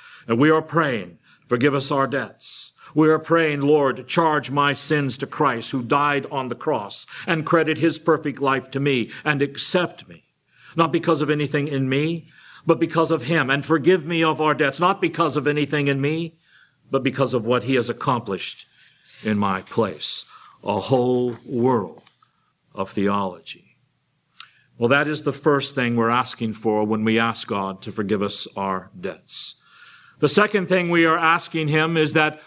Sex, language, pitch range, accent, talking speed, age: male, English, 125-160 Hz, American, 175 wpm, 50-69